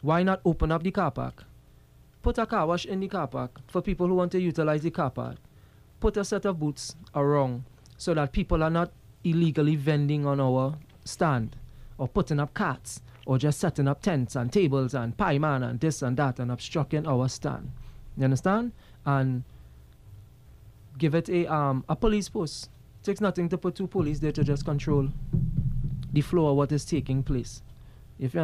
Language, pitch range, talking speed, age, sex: English, 125-160 Hz, 195 wpm, 20-39, male